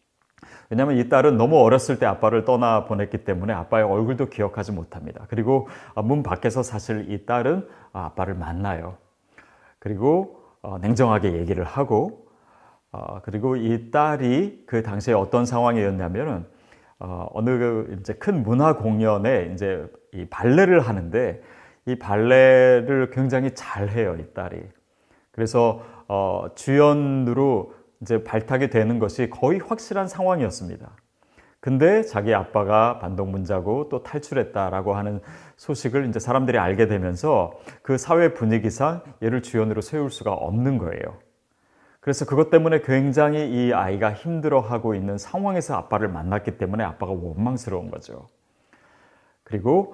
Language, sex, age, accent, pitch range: Korean, male, 30-49, native, 100-130 Hz